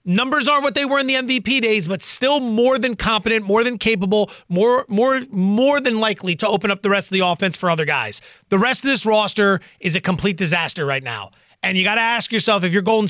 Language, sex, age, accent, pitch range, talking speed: English, male, 30-49, American, 195-235 Hz, 245 wpm